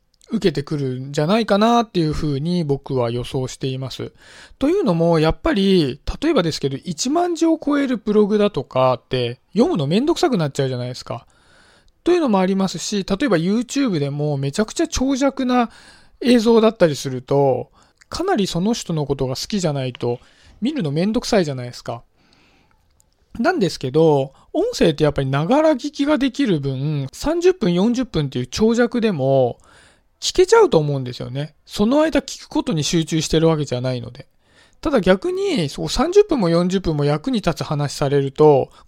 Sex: male